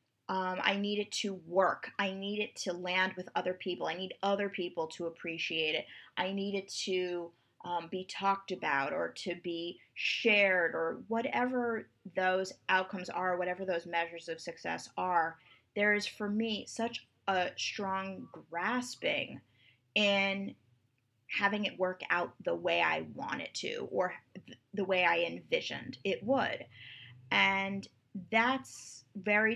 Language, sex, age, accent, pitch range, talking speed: English, female, 20-39, American, 180-220 Hz, 150 wpm